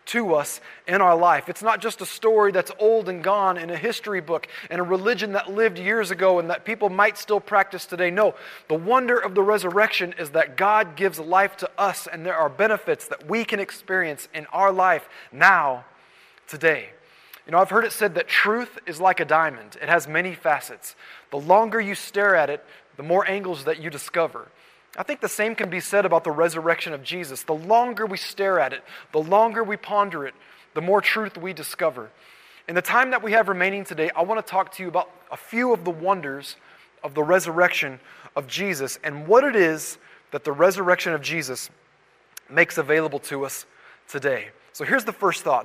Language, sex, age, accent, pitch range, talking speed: English, male, 20-39, American, 165-210 Hz, 210 wpm